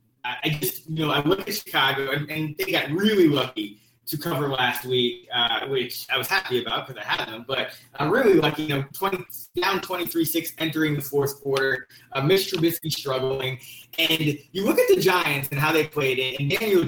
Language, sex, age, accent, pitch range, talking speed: English, male, 20-39, American, 135-165 Hz, 200 wpm